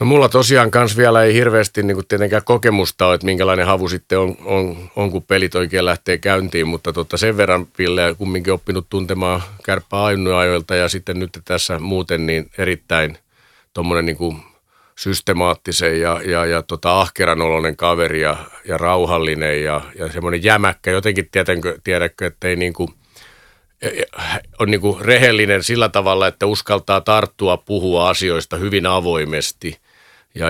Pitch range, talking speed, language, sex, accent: 85-100 Hz, 150 wpm, Finnish, male, native